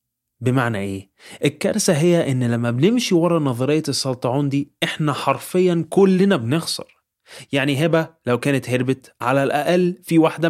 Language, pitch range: Arabic, 115-155 Hz